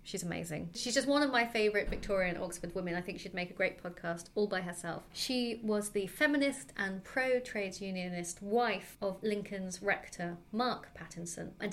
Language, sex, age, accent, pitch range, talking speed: English, female, 30-49, British, 180-215 Hz, 180 wpm